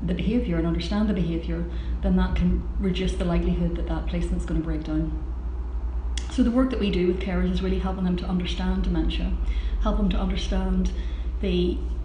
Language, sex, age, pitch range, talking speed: English, female, 30-49, 155-200 Hz, 185 wpm